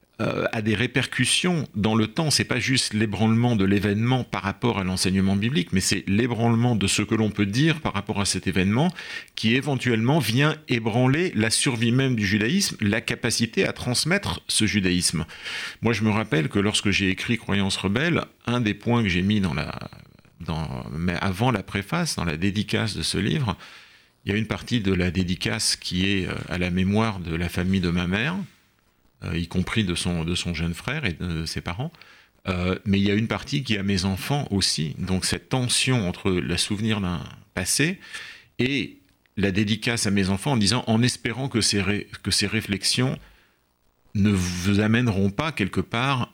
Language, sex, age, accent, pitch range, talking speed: French, male, 40-59, French, 95-120 Hz, 200 wpm